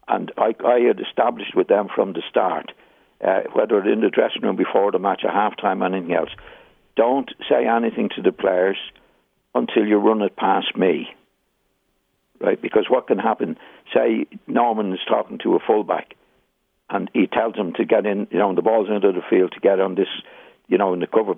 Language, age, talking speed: English, 60-79, 200 wpm